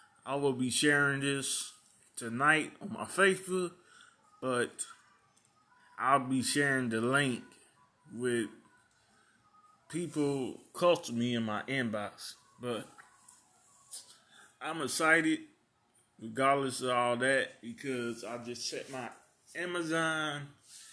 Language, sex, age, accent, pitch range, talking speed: English, male, 20-39, American, 120-150 Hz, 105 wpm